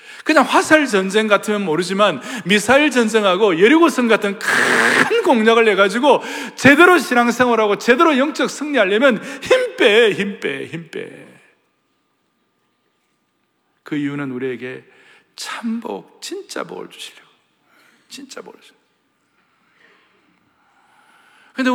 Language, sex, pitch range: Korean, male, 180-265 Hz